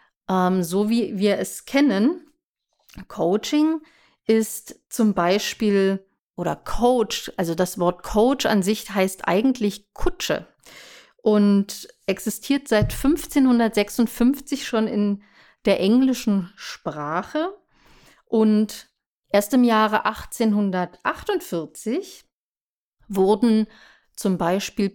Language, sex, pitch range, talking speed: English, female, 195-250 Hz, 90 wpm